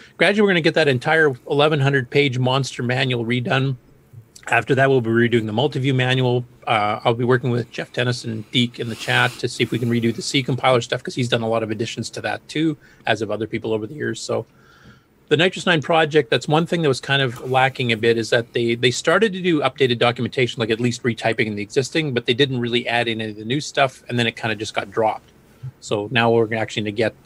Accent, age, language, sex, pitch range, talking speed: American, 30-49, English, male, 115-130 Hz, 255 wpm